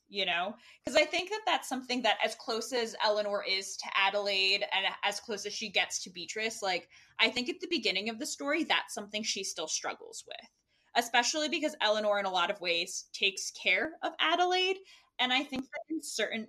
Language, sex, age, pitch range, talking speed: English, female, 20-39, 205-280 Hz, 205 wpm